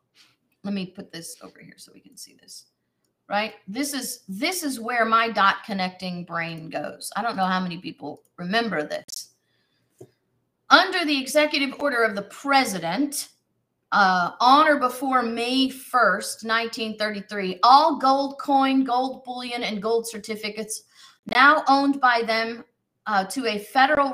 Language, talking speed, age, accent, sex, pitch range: English, 150 wpm, 40-59, American, female, 215-280 Hz